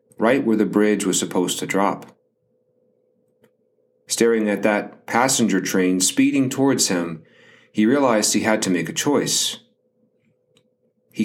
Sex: male